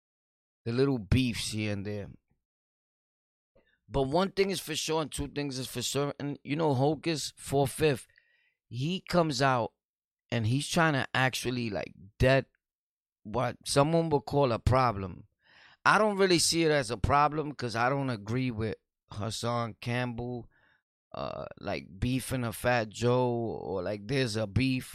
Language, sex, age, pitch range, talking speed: English, male, 30-49, 110-145 Hz, 155 wpm